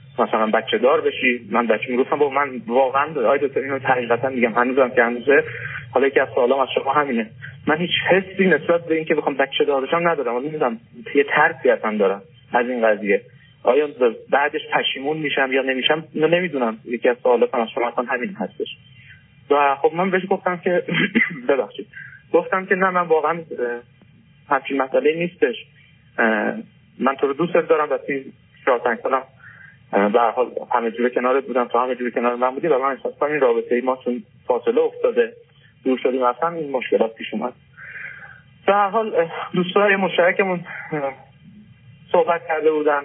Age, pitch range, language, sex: 30-49, 130-190 Hz, Persian, male